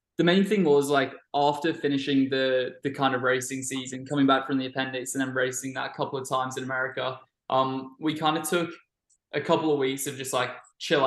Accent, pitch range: Australian, 130-145 Hz